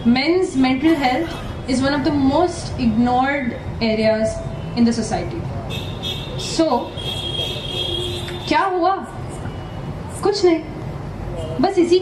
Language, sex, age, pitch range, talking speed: Hindi, female, 20-39, 210-330 Hz, 95 wpm